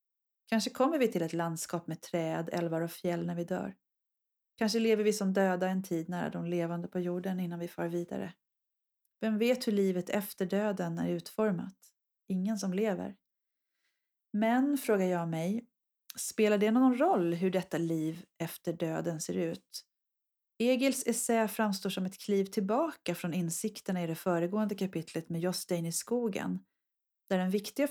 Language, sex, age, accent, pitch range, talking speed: Swedish, female, 40-59, native, 175-225 Hz, 165 wpm